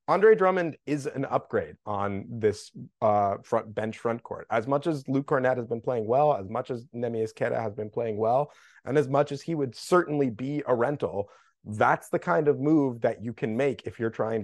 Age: 30-49